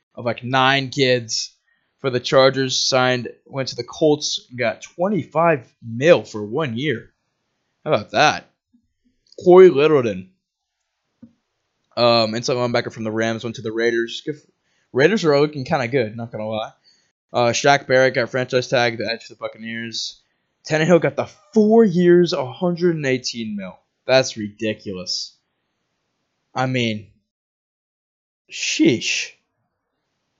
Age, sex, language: 20-39, male, English